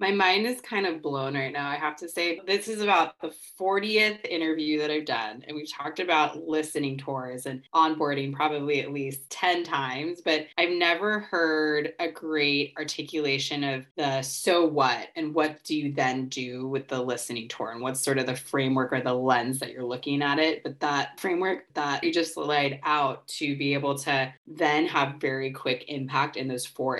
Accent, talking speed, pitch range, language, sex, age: American, 200 wpm, 135-160 Hz, English, female, 20-39